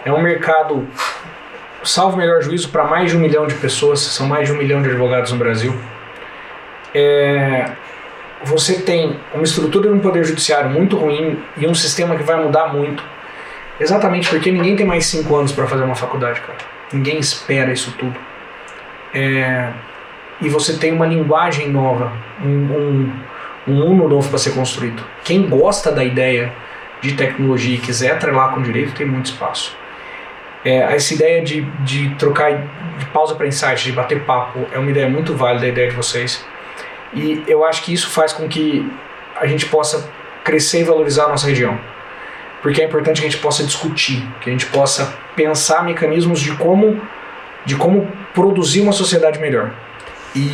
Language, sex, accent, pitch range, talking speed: Portuguese, male, Brazilian, 135-160 Hz, 175 wpm